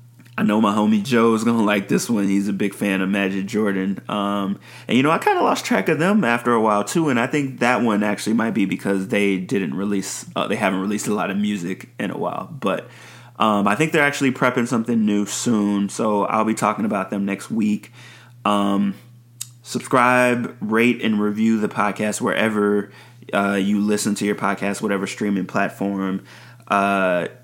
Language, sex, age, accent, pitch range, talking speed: English, male, 20-39, American, 100-120 Hz, 200 wpm